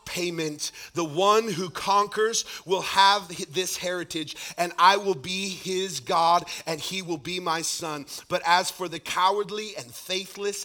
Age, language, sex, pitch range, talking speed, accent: 40-59, English, male, 135-195 Hz, 160 wpm, American